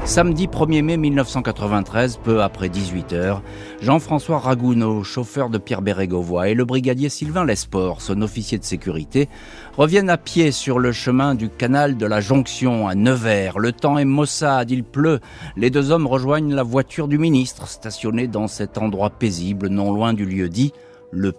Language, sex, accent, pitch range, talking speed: French, male, French, 105-140 Hz, 170 wpm